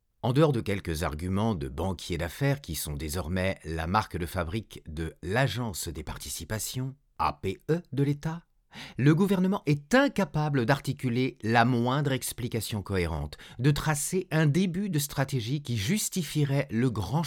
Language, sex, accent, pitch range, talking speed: French, male, French, 95-145 Hz, 145 wpm